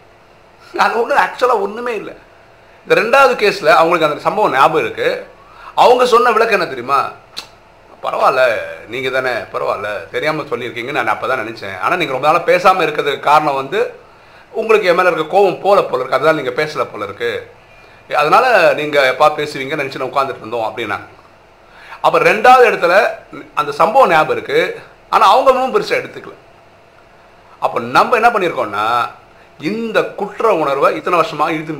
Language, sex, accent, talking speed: Tamil, male, native, 145 wpm